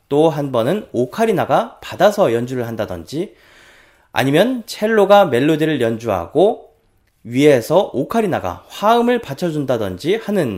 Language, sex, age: Korean, male, 20-39